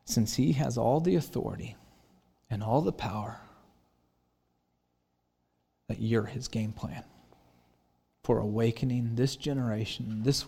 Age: 30-49